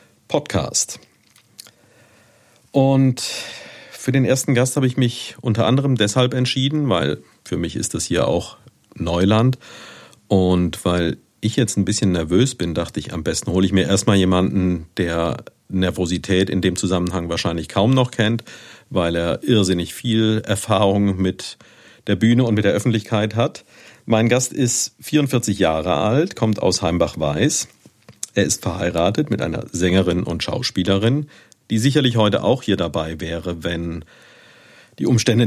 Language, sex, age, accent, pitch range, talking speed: German, male, 50-69, German, 90-120 Hz, 145 wpm